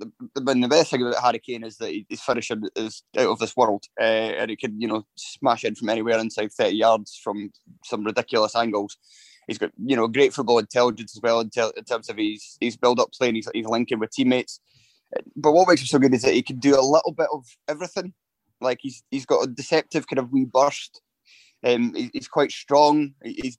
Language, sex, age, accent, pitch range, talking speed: English, male, 20-39, British, 115-150 Hz, 225 wpm